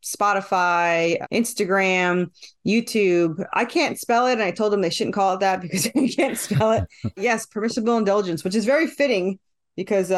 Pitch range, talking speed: 175-240 Hz, 170 wpm